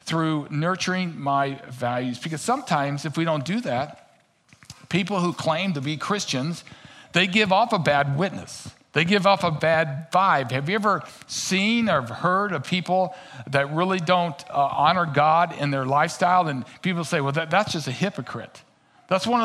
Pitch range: 145-190 Hz